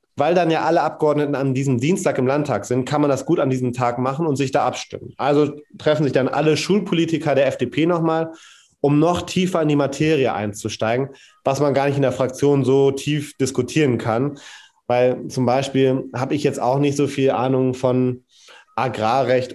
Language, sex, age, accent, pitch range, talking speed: German, male, 30-49, German, 125-150 Hz, 195 wpm